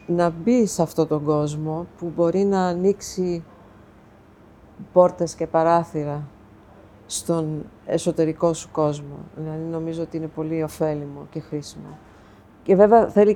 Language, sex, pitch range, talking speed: Greek, female, 150-185 Hz, 125 wpm